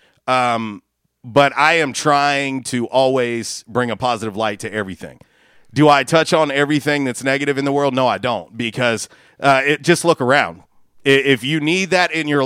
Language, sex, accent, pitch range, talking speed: English, male, American, 120-150 Hz, 180 wpm